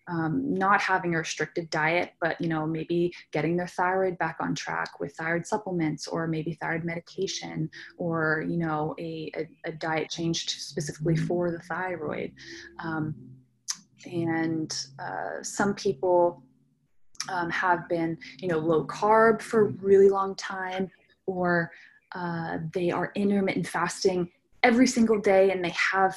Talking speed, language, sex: 145 wpm, English, female